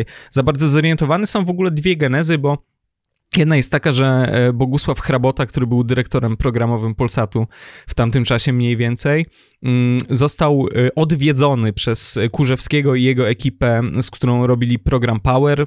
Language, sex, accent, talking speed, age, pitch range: Polish, male, native, 140 wpm, 20-39, 120-145 Hz